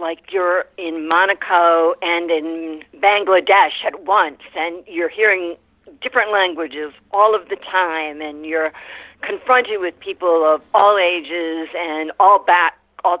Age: 50-69